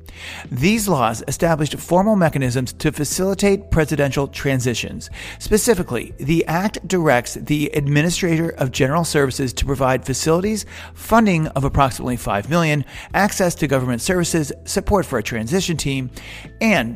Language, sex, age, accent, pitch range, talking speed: English, male, 40-59, American, 125-175 Hz, 125 wpm